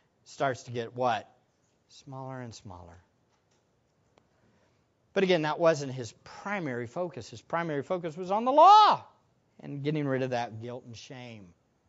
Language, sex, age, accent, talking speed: English, male, 50-69, American, 145 wpm